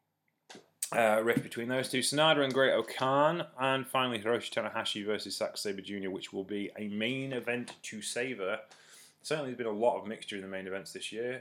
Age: 20-39